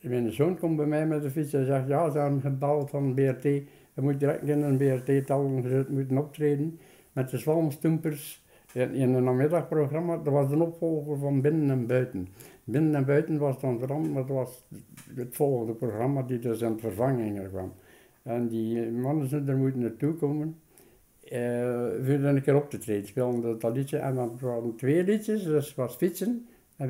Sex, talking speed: male, 190 wpm